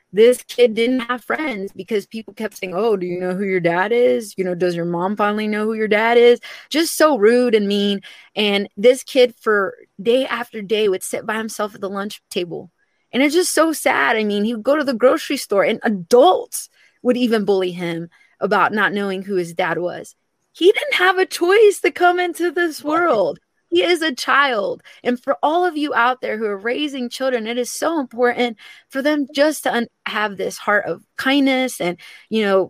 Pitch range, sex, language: 205-280 Hz, female, English